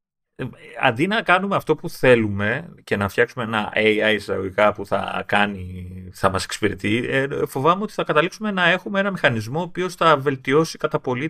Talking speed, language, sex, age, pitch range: 165 wpm, Greek, male, 30-49, 100-155 Hz